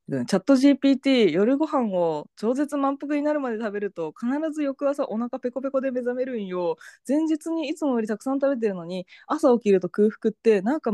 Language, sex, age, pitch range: Japanese, female, 20-39, 190-280 Hz